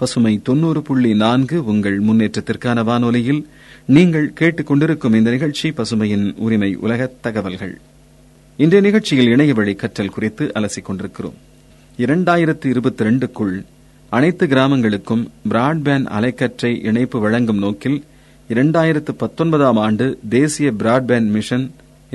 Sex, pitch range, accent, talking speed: male, 110-140 Hz, native, 105 wpm